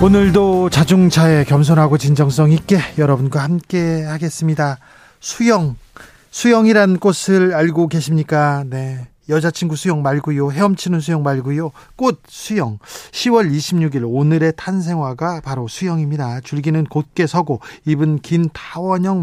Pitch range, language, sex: 140-180 Hz, Korean, male